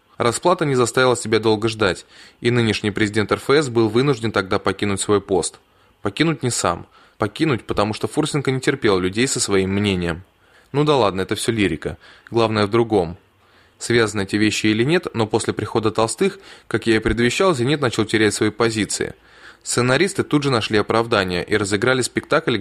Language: Russian